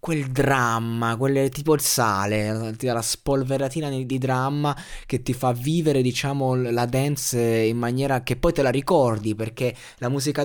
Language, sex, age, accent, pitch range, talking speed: Italian, male, 20-39, native, 115-145 Hz, 165 wpm